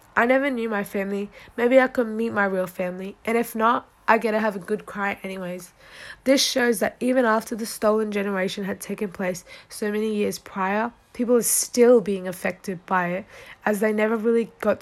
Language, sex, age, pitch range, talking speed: English, female, 10-29, 195-230 Hz, 205 wpm